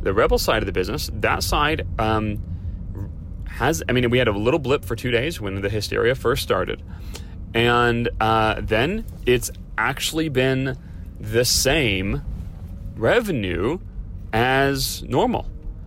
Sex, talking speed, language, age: male, 135 wpm, English, 30-49